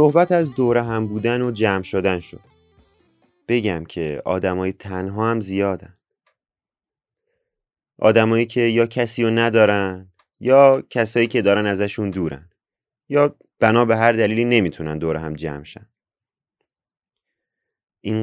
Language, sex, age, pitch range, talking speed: Persian, male, 30-49, 90-115 Hz, 120 wpm